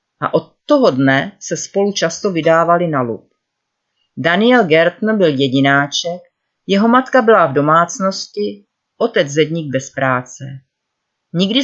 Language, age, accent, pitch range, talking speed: Czech, 40-59, native, 145-205 Hz, 125 wpm